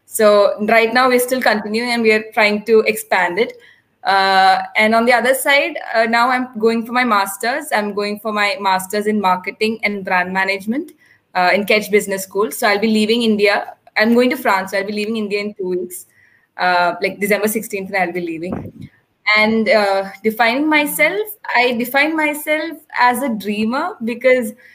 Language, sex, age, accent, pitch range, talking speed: English, female, 20-39, Indian, 215-285 Hz, 185 wpm